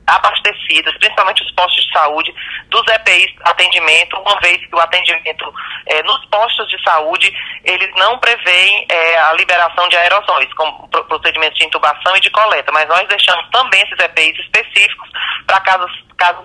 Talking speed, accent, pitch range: 155 wpm, Brazilian, 165-195 Hz